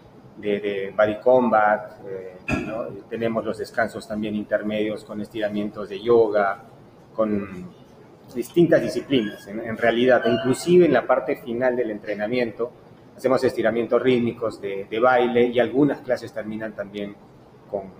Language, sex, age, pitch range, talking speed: Spanish, male, 30-49, 110-130 Hz, 135 wpm